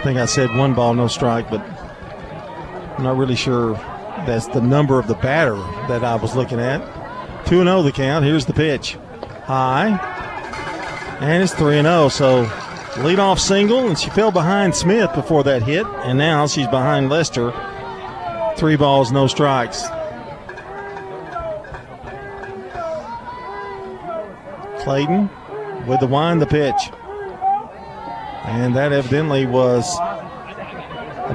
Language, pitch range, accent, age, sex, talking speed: English, 130-190 Hz, American, 40-59, male, 125 wpm